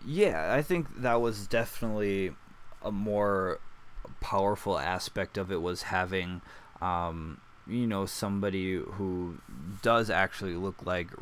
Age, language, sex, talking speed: 20-39, English, male, 125 wpm